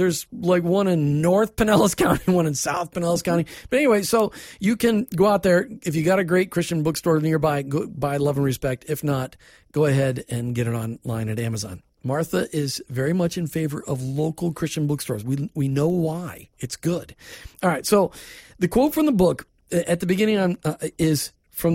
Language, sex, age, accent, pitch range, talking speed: English, male, 40-59, American, 150-200 Hz, 205 wpm